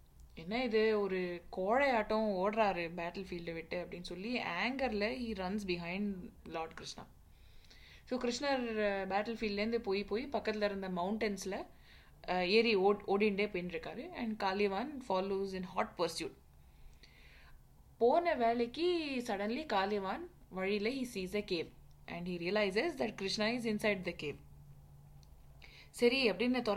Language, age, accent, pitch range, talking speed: Tamil, 20-39, native, 180-230 Hz, 125 wpm